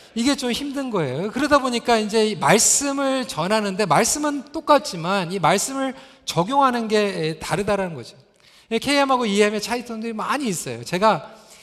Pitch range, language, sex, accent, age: 185-265 Hz, Korean, male, native, 40-59